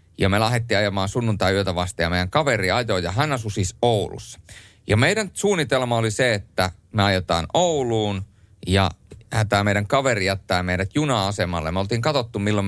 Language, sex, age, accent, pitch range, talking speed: Finnish, male, 30-49, native, 90-110 Hz, 170 wpm